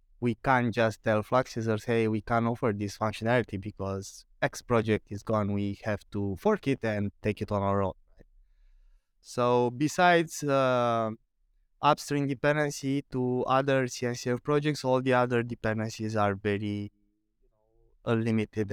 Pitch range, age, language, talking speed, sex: 110-135 Hz, 20-39, English, 140 wpm, male